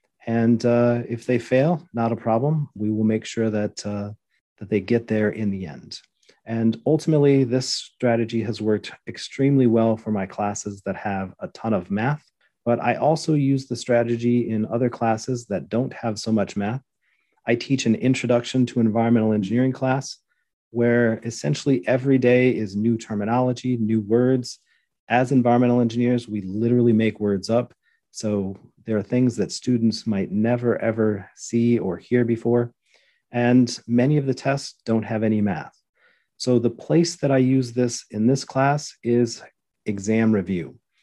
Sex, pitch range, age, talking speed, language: male, 110-125 Hz, 40-59, 165 wpm, English